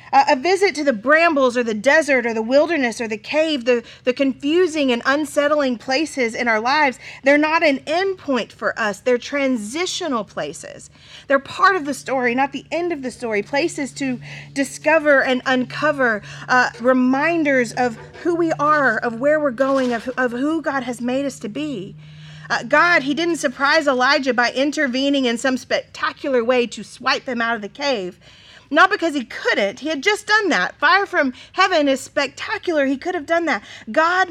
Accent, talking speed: American, 185 wpm